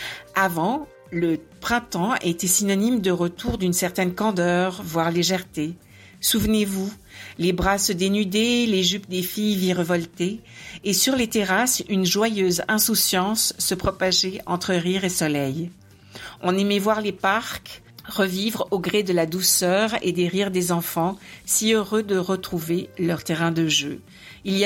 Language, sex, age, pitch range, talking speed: French, female, 50-69, 170-200 Hz, 150 wpm